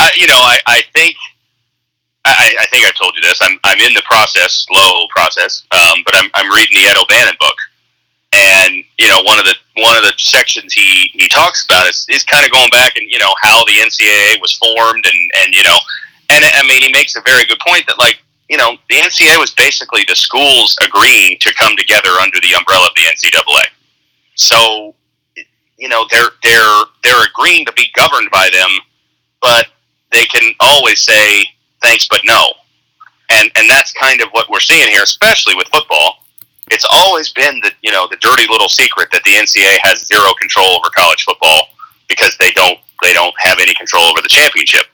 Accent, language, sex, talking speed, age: American, English, male, 205 wpm, 30-49